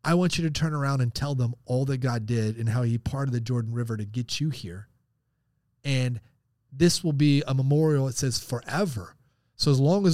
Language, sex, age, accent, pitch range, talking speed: English, male, 30-49, American, 125-180 Hz, 220 wpm